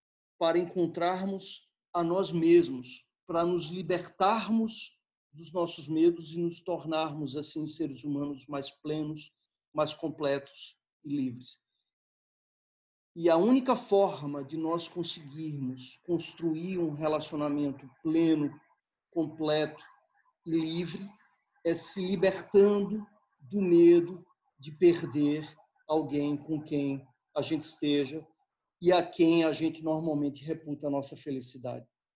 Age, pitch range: 40-59, 145-180 Hz